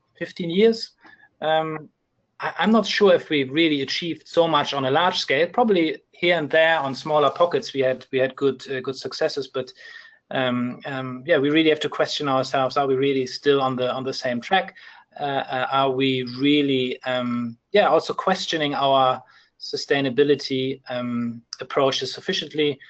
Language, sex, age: English, male, 30-49